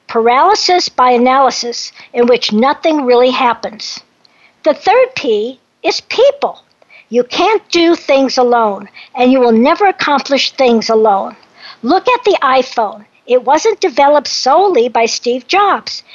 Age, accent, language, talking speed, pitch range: 60-79, American, English, 135 wpm, 245-350 Hz